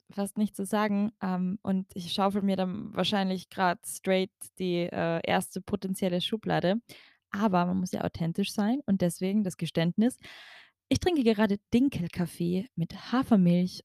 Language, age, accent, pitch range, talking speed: German, 10-29, German, 185-225 Hz, 145 wpm